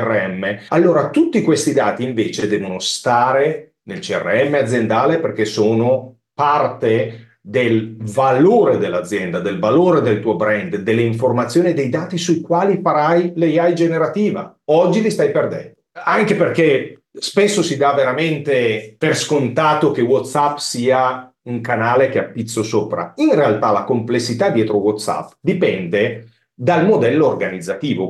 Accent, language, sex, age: native, Italian, male, 40-59